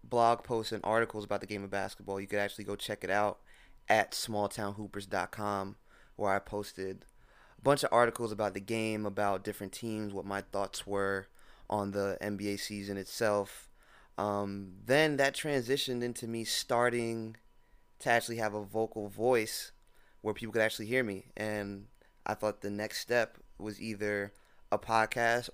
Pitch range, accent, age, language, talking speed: 100-120 Hz, American, 20-39, English, 160 wpm